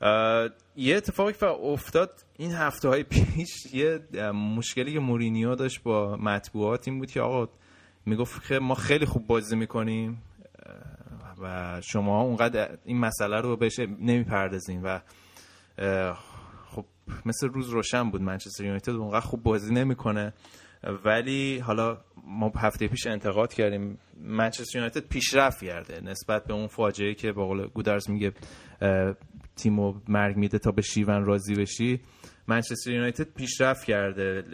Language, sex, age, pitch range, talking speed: Persian, male, 20-39, 100-125 Hz, 135 wpm